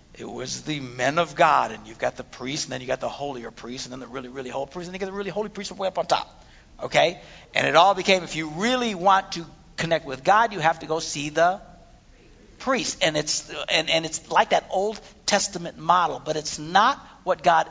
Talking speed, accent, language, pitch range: 240 wpm, American, English, 170-260 Hz